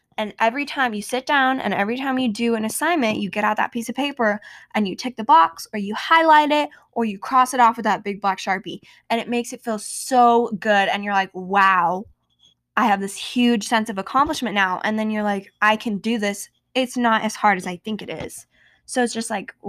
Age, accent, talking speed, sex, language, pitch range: 10-29, American, 240 wpm, female, English, 195-245 Hz